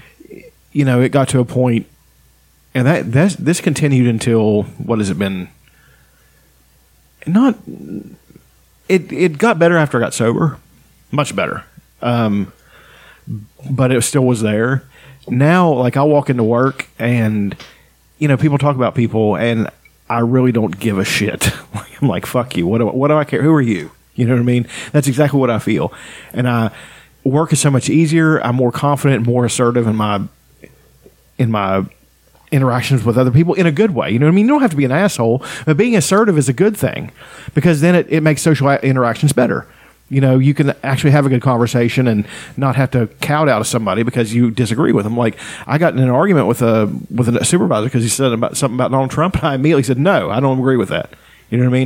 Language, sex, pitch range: English, male, 115-150 Hz